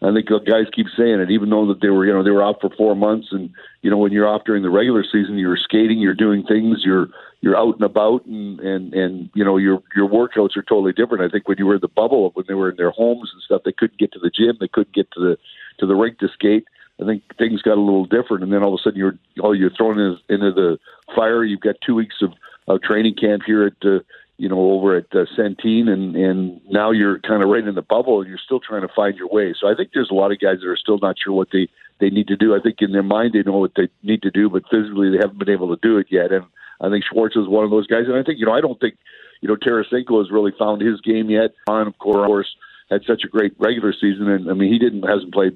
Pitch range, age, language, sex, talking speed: 95-110 Hz, 50-69, English, male, 290 wpm